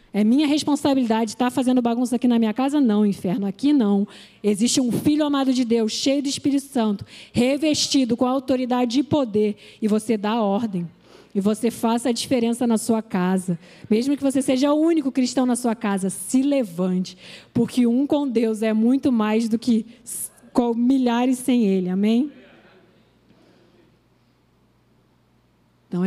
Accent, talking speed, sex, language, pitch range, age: Brazilian, 155 wpm, female, Portuguese, 205-255 Hz, 20-39